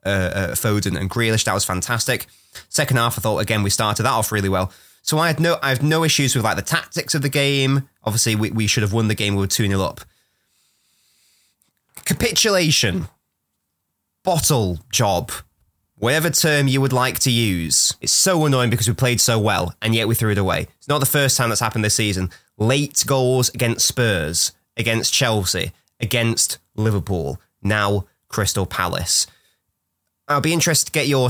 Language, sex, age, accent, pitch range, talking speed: English, male, 20-39, British, 105-135 Hz, 185 wpm